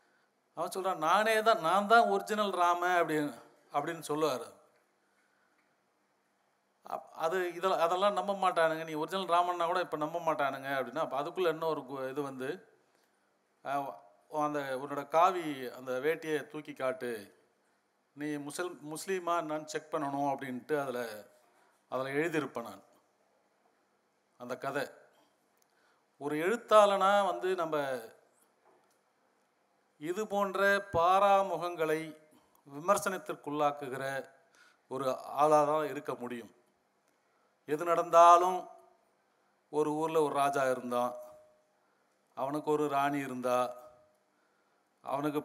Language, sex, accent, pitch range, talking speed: Tamil, male, native, 130-170 Hz, 95 wpm